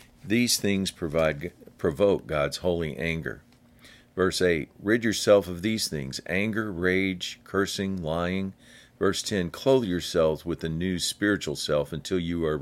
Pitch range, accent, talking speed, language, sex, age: 80-100 Hz, American, 140 wpm, English, male, 50-69